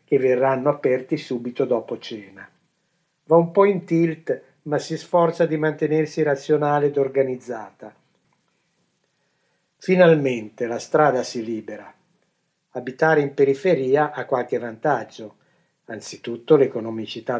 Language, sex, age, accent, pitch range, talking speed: Italian, male, 50-69, native, 125-165 Hz, 110 wpm